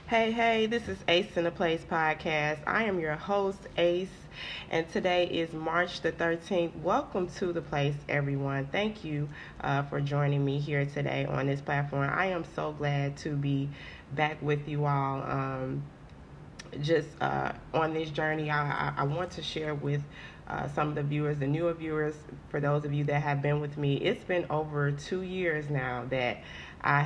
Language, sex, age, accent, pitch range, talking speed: English, female, 20-39, American, 140-160 Hz, 185 wpm